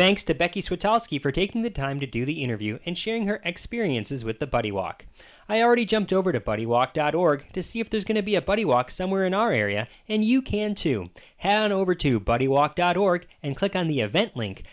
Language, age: English, 30-49